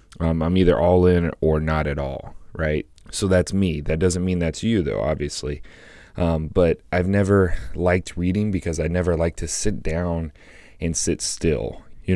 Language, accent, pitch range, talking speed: English, American, 80-90 Hz, 185 wpm